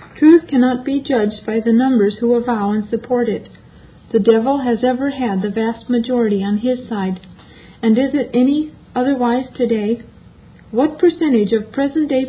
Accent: American